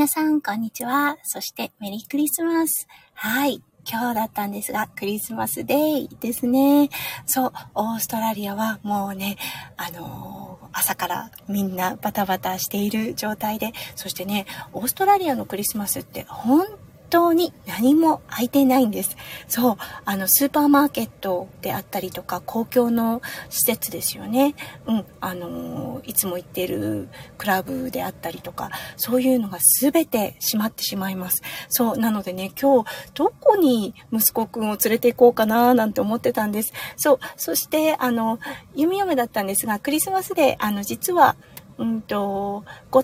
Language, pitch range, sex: Japanese, 210-285 Hz, female